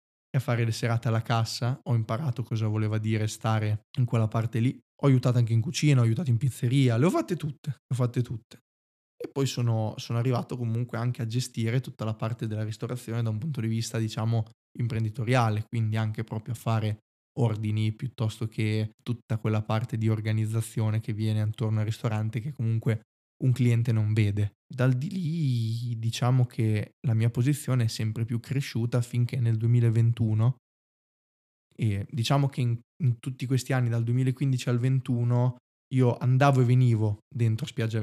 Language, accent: Italian, native